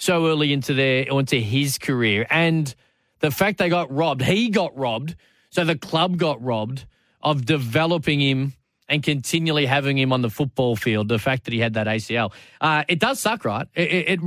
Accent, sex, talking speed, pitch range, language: Australian, male, 195 wpm, 125-165 Hz, English